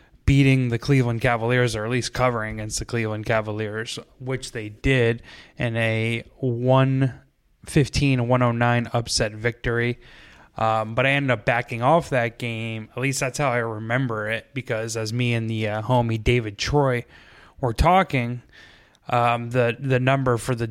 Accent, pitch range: American, 115-130 Hz